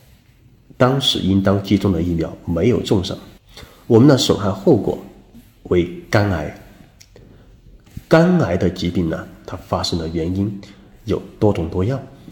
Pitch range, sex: 90-110 Hz, male